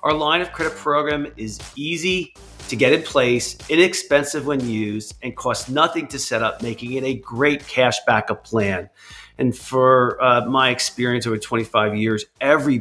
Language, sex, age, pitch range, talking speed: English, male, 40-59, 110-145 Hz, 170 wpm